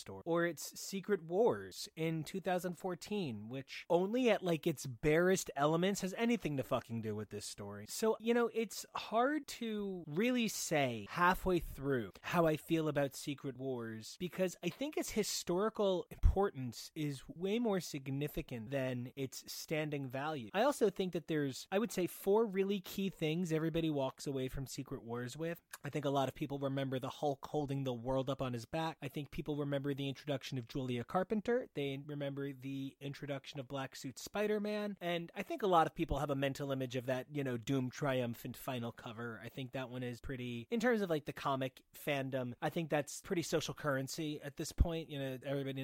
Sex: male